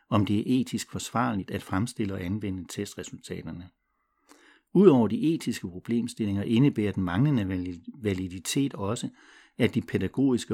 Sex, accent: male, Danish